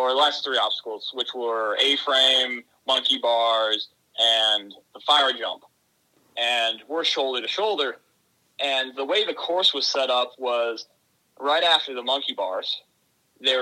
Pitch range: 120-140 Hz